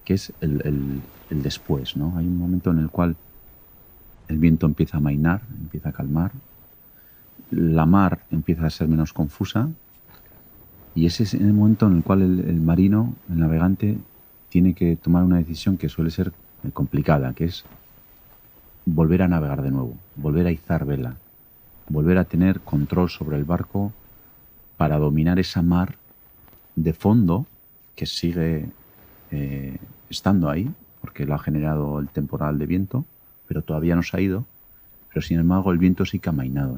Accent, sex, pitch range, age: Spanish, male, 75-95 Hz, 40-59